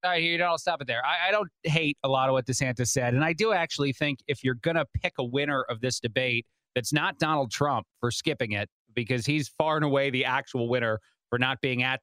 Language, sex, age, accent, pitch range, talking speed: English, male, 30-49, American, 130-155 Hz, 260 wpm